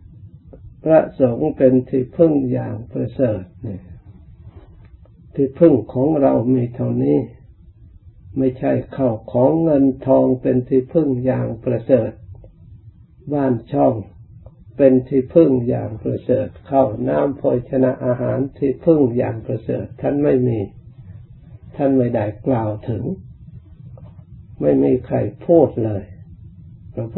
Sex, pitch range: male, 115-135 Hz